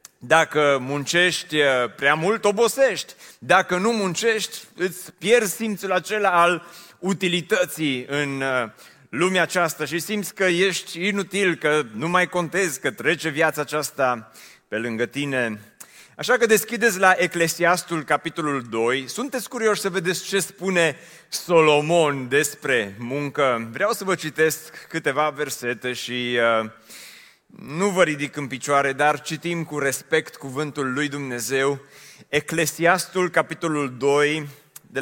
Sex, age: male, 30-49